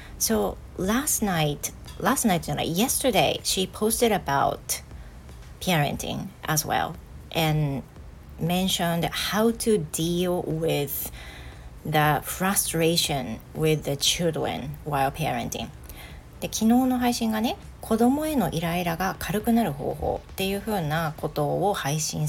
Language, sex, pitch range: Japanese, female, 150-215 Hz